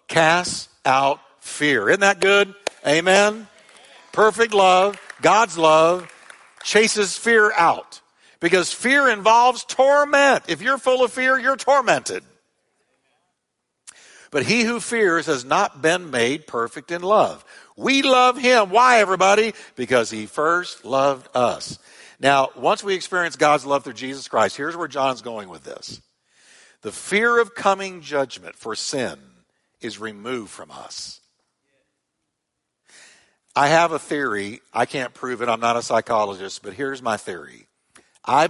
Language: English